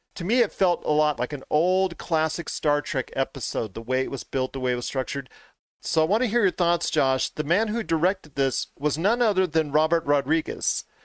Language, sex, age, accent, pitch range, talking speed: English, male, 40-59, American, 130-170 Hz, 230 wpm